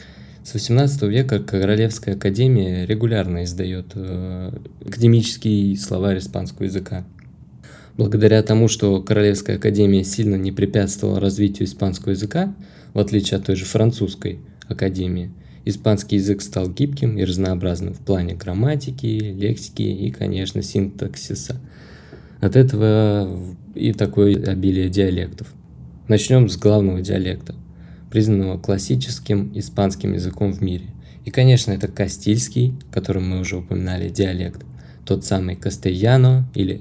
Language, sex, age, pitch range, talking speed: Russian, male, 20-39, 95-110 Hz, 115 wpm